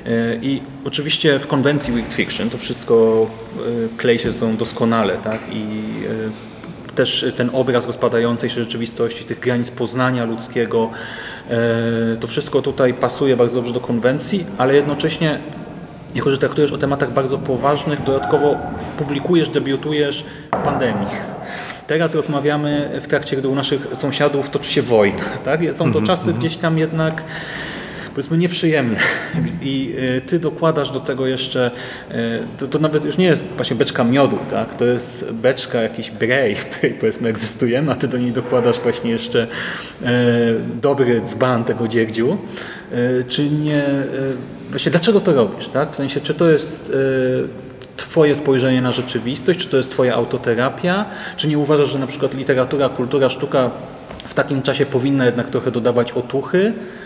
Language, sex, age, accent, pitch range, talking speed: Polish, male, 30-49, native, 120-150 Hz, 145 wpm